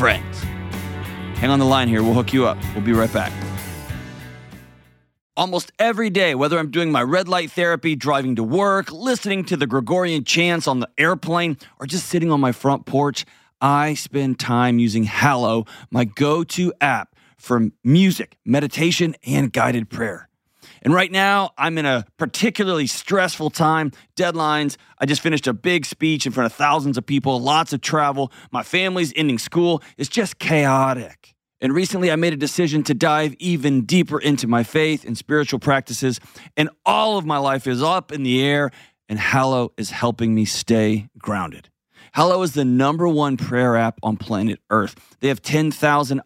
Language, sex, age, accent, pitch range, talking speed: English, male, 30-49, American, 120-160 Hz, 175 wpm